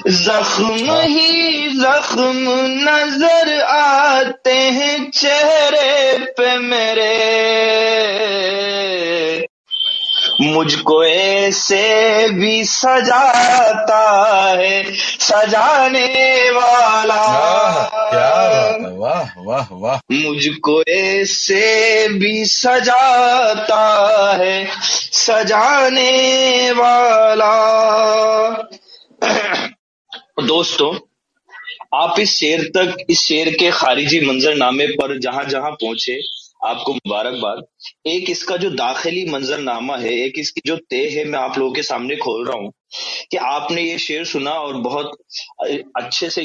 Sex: male